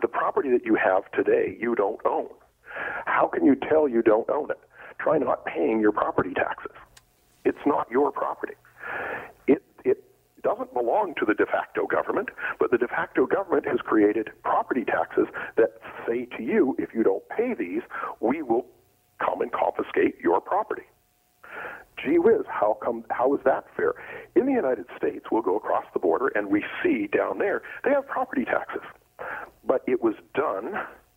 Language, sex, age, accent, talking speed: English, male, 50-69, American, 175 wpm